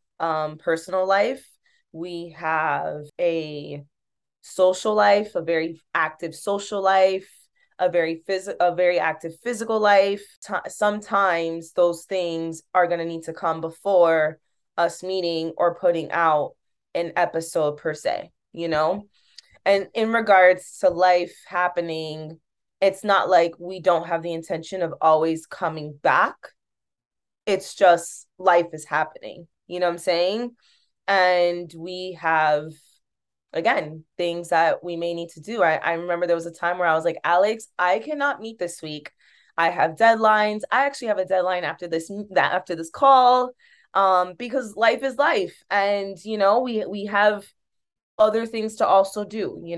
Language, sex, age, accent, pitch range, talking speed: English, female, 20-39, American, 165-200 Hz, 155 wpm